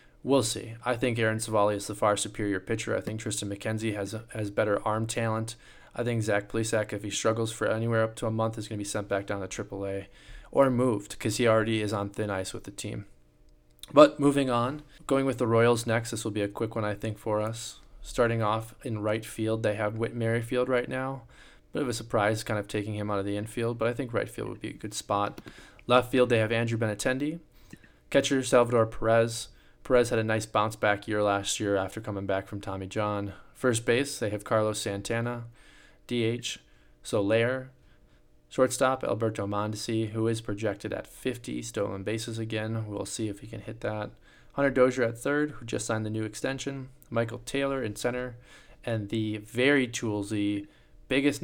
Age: 20-39